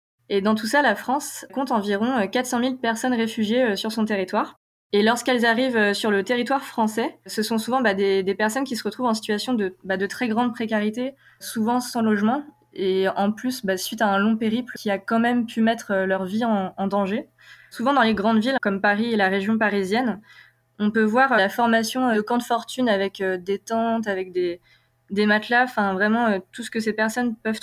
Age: 20-39